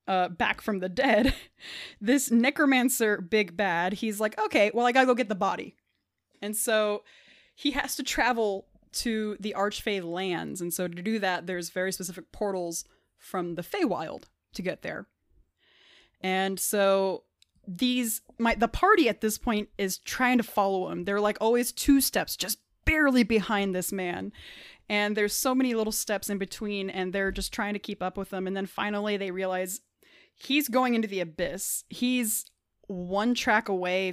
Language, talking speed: English, 175 wpm